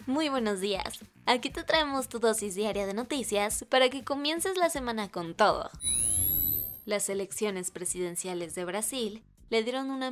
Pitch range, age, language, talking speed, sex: 185-240 Hz, 20-39, Spanish, 155 wpm, female